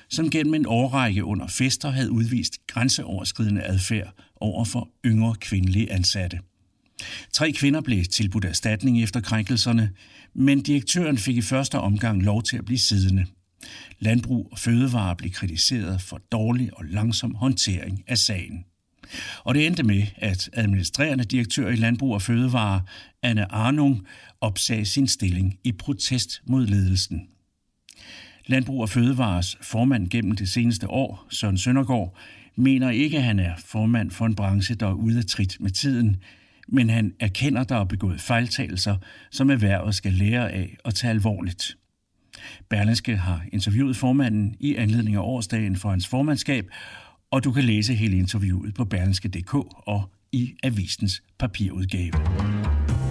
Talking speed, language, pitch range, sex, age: 145 wpm, Danish, 95-125 Hz, male, 60-79